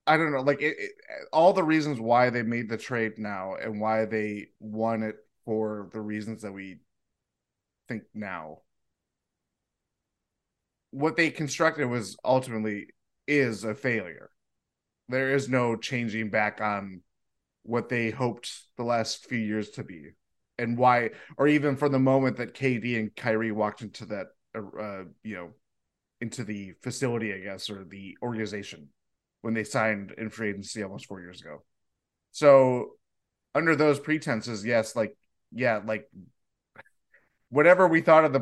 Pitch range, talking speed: 105-130 Hz, 155 wpm